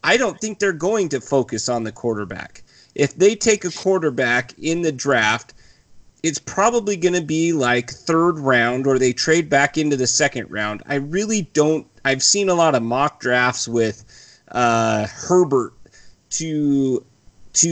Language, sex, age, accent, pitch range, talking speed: English, male, 30-49, American, 120-165 Hz, 165 wpm